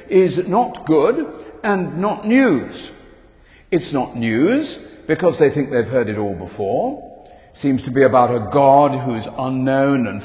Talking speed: 165 wpm